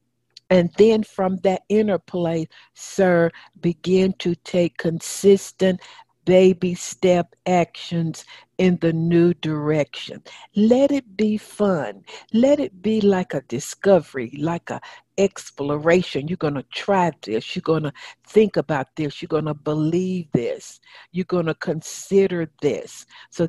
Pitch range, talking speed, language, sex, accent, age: 160-190 Hz, 135 wpm, English, female, American, 60-79